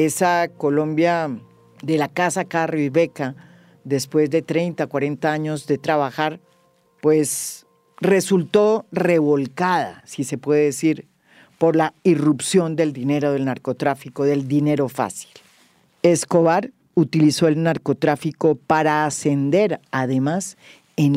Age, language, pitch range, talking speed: 50-69, English, 140-180 Hz, 110 wpm